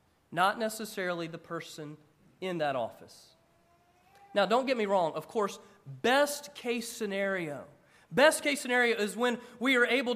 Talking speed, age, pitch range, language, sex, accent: 150 wpm, 40-59, 170-230 Hz, English, male, American